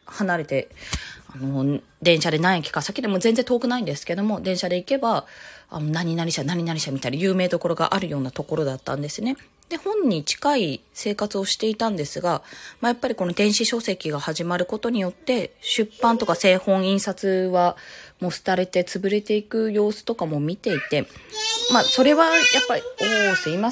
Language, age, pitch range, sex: Japanese, 20-39, 175-255 Hz, female